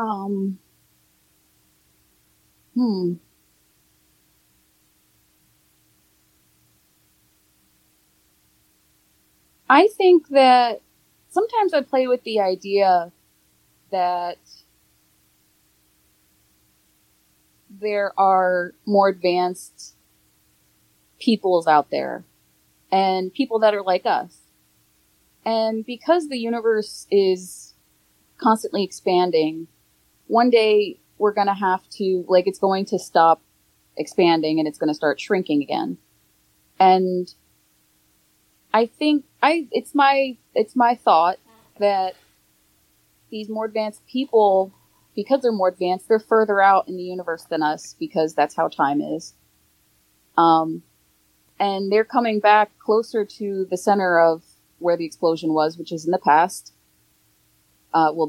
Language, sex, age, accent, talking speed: English, female, 30-49, American, 105 wpm